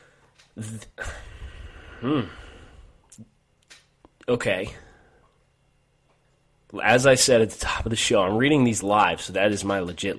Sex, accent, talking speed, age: male, American, 120 wpm, 30-49